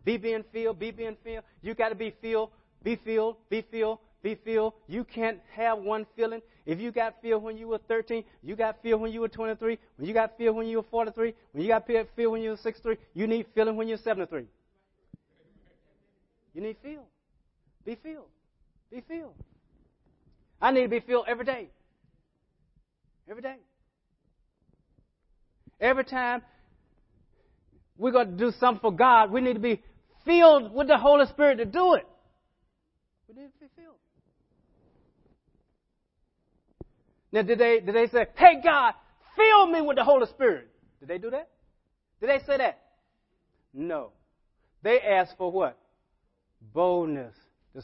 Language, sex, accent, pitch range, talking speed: English, male, American, 210-250 Hz, 160 wpm